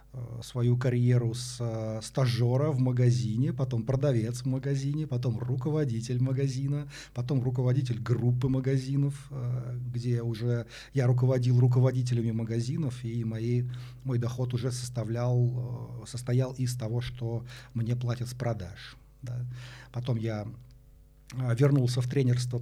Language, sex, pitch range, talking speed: Russian, male, 120-130 Hz, 105 wpm